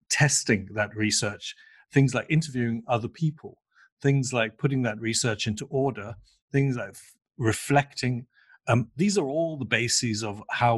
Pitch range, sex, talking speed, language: 110-130 Hz, male, 145 wpm, English